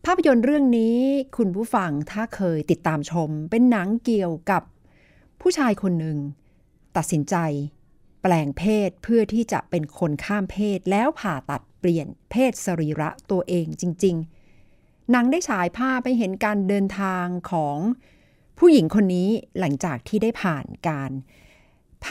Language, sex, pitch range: Thai, female, 165-225 Hz